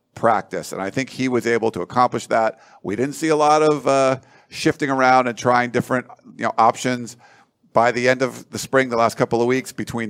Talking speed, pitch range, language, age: 220 wpm, 105-125 Hz, English, 50-69